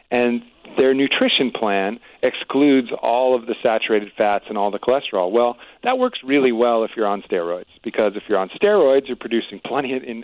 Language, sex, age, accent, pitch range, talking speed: English, male, 40-59, American, 110-130 Hz, 195 wpm